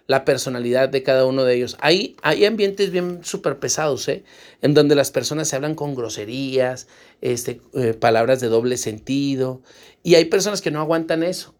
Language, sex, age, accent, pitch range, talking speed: Spanish, male, 40-59, Mexican, 130-165 Hz, 180 wpm